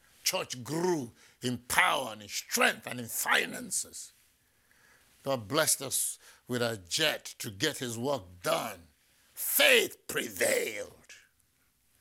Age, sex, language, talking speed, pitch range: 60-79, male, English, 115 wpm, 110-130 Hz